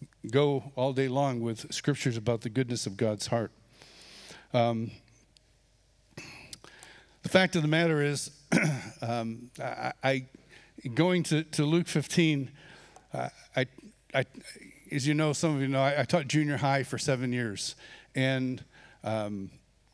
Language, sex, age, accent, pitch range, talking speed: English, male, 60-79, American, 130-165 Hz, 140 wpm